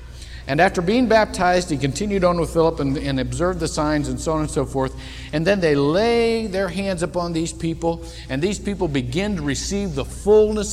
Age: 50-69